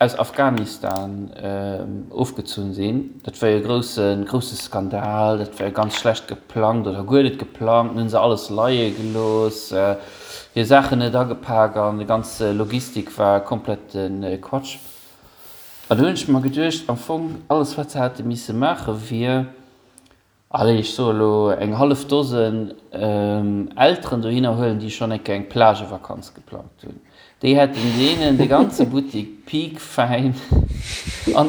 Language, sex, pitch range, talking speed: English, male, 110-135 Hz, 150 wpm